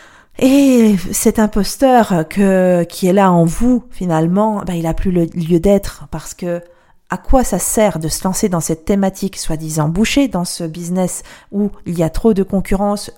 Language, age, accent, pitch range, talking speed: French, 40-59, French, 175-245 Hz, 185 wpm